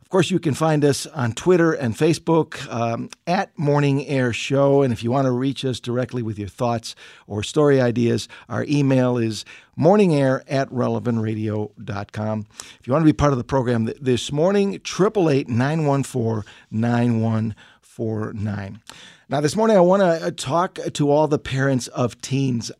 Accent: American